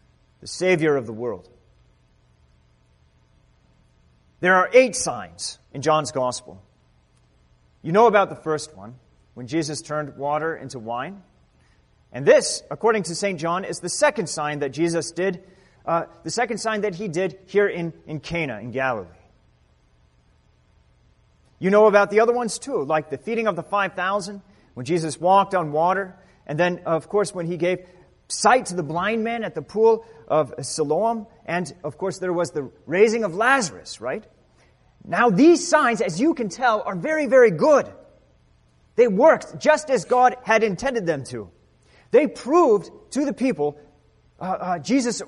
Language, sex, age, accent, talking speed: English, male, 30-49, American, 165 wpm